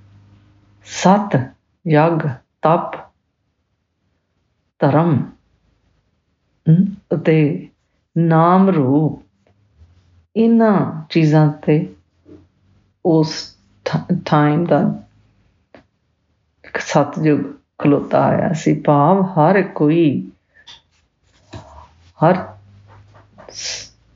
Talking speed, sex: 50 wpm, female